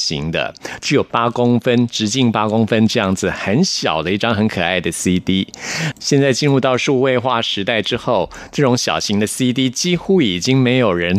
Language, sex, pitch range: Chinese, male, 100-135 Hz